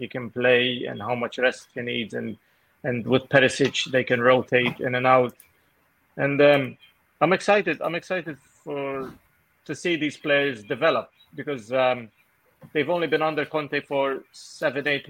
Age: 30-49